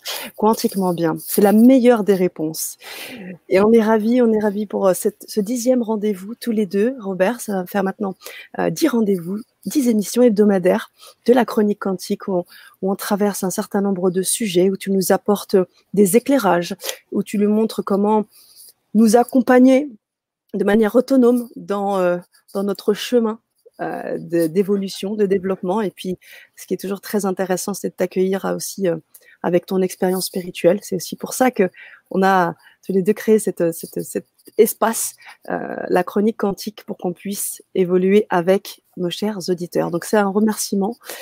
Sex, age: female, 30-49